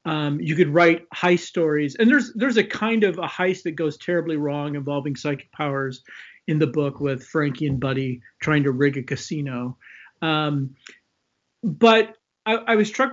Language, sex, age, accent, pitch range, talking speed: English, male, 40-59, American, 150-195 Hz, 180 wpm